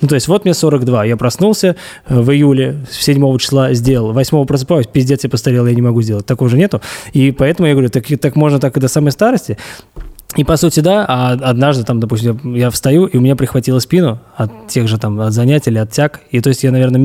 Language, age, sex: Russian, 20-39, male